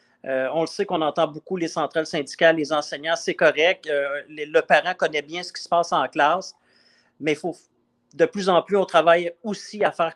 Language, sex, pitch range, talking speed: French, male, 160-205 Hz, 220 wpm